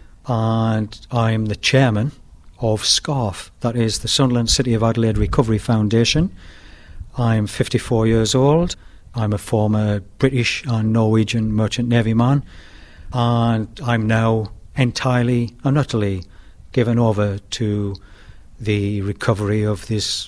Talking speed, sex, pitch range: 120 wpm, male, 105-120 Hz